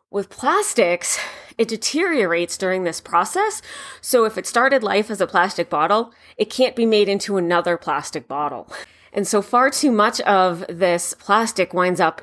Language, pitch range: English, 180-230 Hz